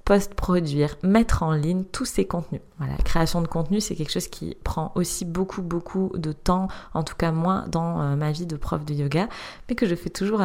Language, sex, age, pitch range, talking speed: French, female, 20-39, 155-180 Hz, 220 wpm